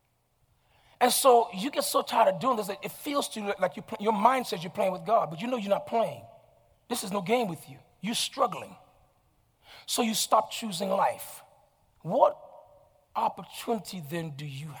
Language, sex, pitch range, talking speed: English, male, 215-295 Hz, 185 wpm